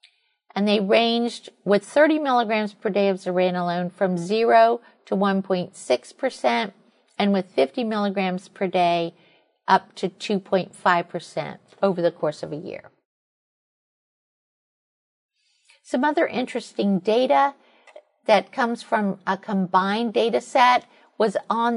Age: 50-69